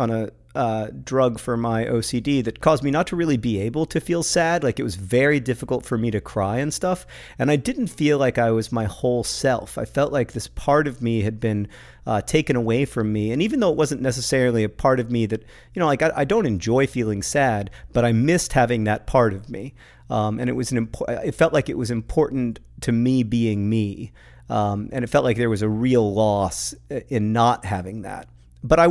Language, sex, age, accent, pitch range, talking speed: English, male, 40-59, American, 105-130 Hz, 235 wpm